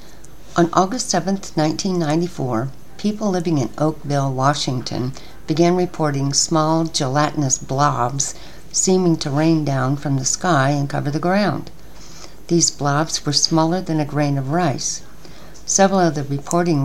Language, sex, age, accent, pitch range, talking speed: English, female, 60-79, American, 140-165 Hz, 135 wpm